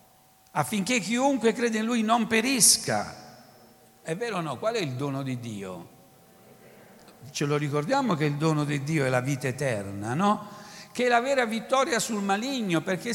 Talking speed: 175 wpm